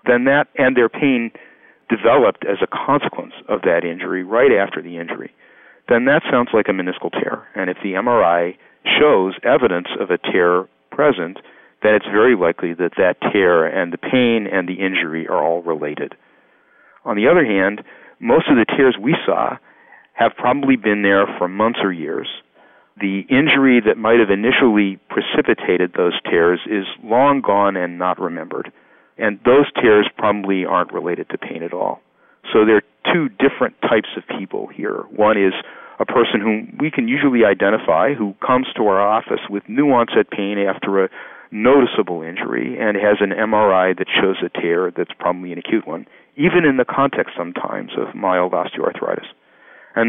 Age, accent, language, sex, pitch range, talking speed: 50-69, American, English, male, 95-115 Hz, 175 wpm